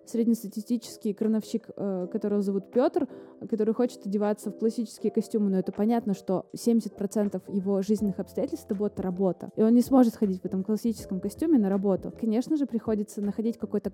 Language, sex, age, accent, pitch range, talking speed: Russian, female, 20-39, native, 190-220 Hz, 165 wpm